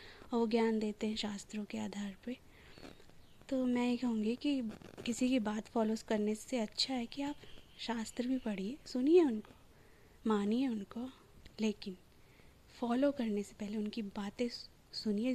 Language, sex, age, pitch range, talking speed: Hindi, female, 20-39, 205-235 Hz, 150 wpm